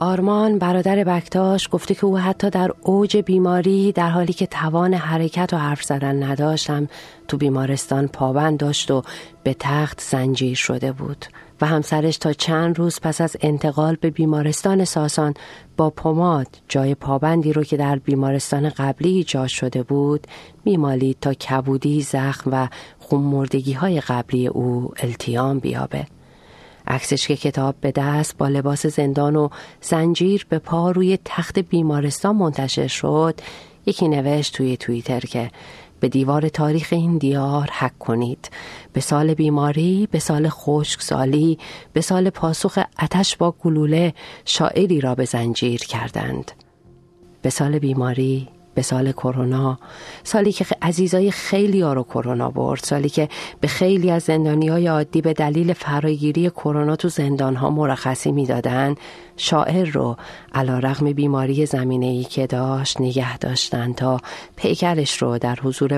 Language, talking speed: Persian, 140 wpm